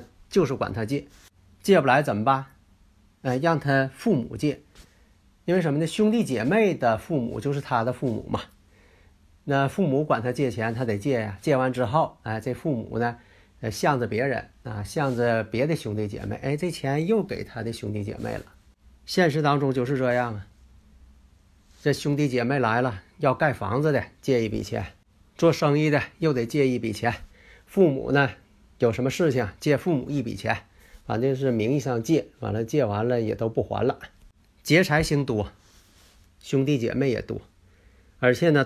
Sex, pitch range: male, 100-145 Hz